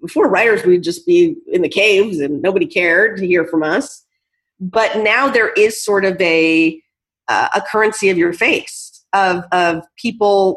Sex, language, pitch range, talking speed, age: female, English, 180-235 Hz, 175 wpm, 30-49